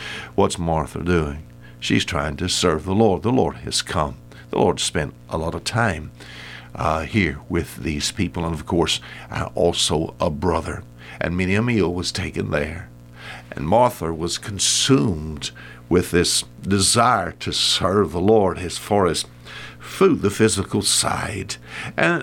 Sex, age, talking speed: male, 60-79, 155 wpm